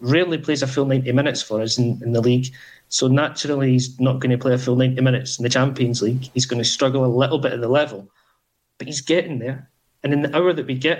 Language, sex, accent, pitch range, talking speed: English, male, British, 125-145 Hz, 260 wpm